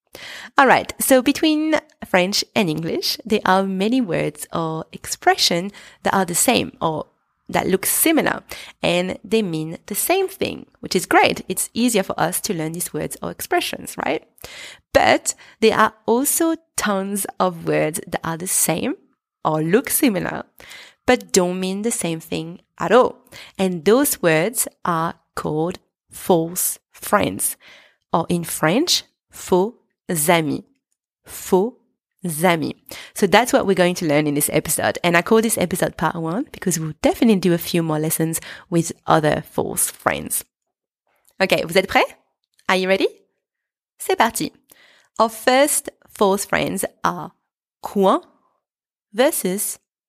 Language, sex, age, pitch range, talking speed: English, female, 30-49, 170-235 Hz, 145 wpm